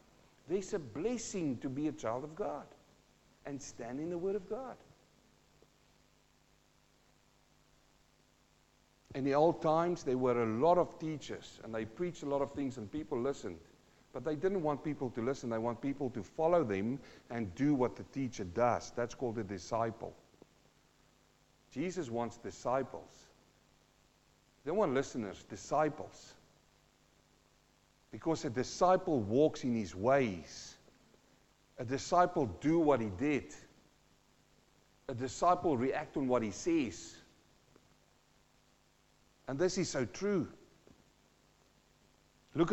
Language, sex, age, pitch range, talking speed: English, male, 50-69, 120-165 Hz, 130 wpm